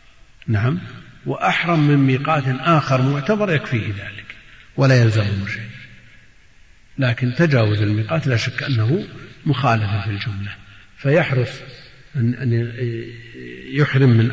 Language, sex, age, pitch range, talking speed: Arabic, male, 50-69, 110-135 Hz, 105 wpm